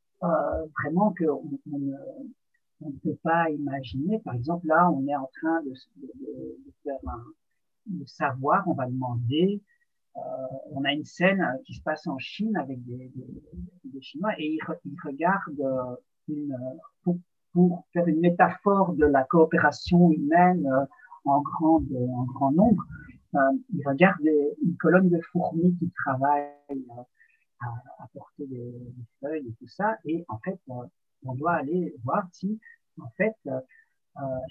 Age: 60-79